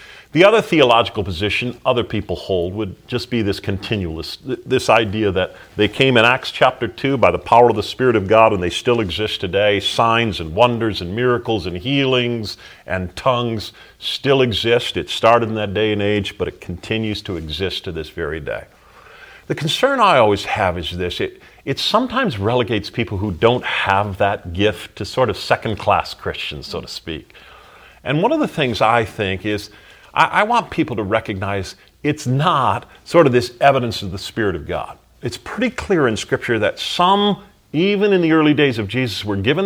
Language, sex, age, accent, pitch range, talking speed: English, male, 40-59, American, 100-125 Hz, 190 wpm